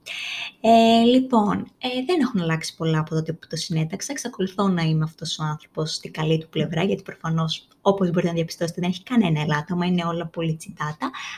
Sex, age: female, 20-39